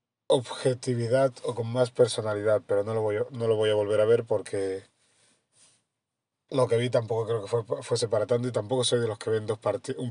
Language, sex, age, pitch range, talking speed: Spanish, male, 30-49, 115-130 Hz, 215 wpm